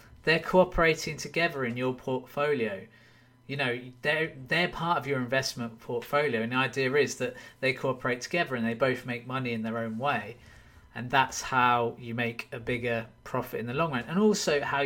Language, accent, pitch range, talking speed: English, British, 115-145 Hz, 190 wpm